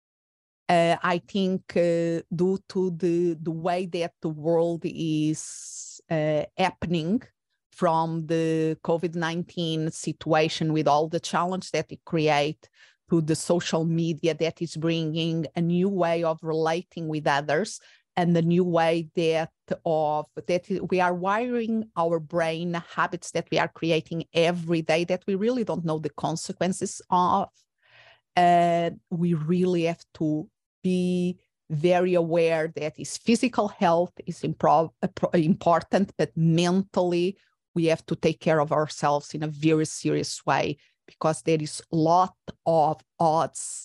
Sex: female